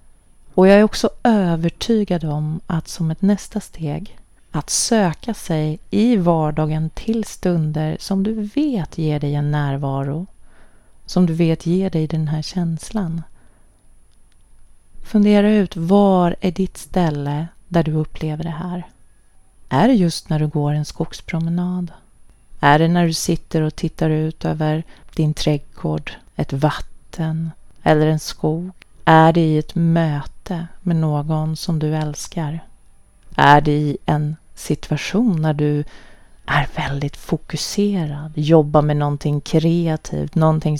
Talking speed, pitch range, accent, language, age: 135 wpm, 155-180 Hz, native, Swedish, 30-49